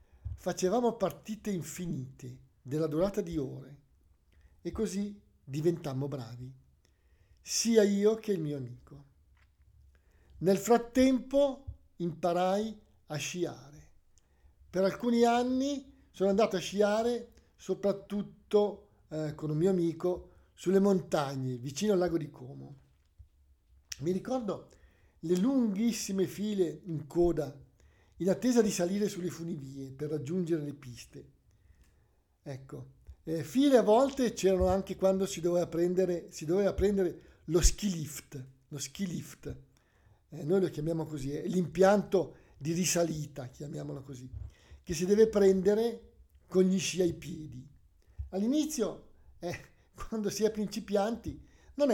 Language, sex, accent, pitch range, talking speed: Italian, male, native, 140-200 Hz, 120 wpm